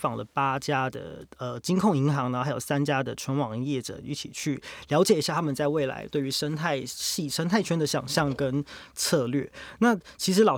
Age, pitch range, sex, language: 20-39, 135-170 Hz, male, Chinese